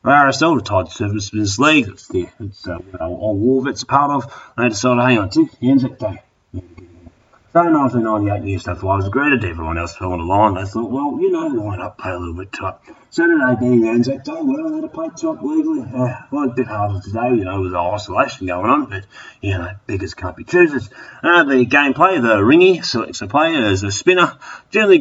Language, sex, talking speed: English, male, 235 wpm